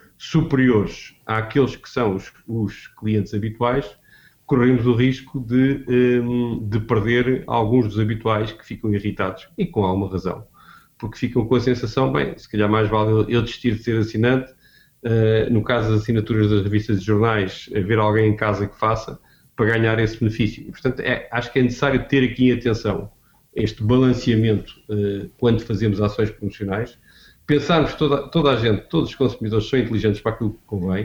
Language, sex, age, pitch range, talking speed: Portuguese, male, 40-59, 110-125 Hz, 170 wpm